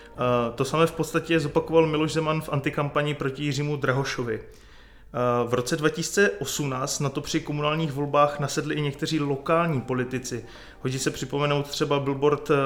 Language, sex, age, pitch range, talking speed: Czech, male, 20-39, 135-155 Hz, 140 wpm